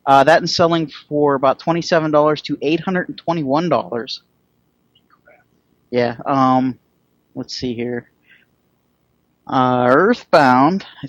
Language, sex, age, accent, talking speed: English, male, 30-49, American, 90 wpm